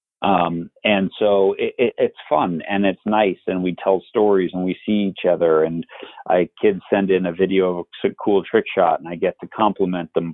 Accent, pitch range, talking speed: American, 90-105 Hz, 205 wpm